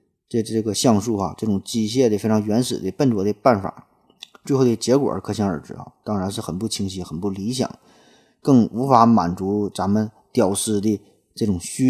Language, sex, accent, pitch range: Chinese, male, native, 95-120 Hz